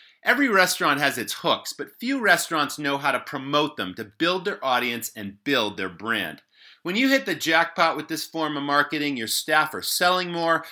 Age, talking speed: 30-49, 200 wpm